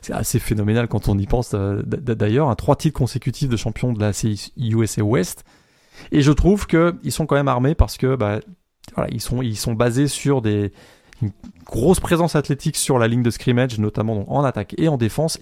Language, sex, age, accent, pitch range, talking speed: French, male, 20-39, French, 110-140 Hz, 210 wpm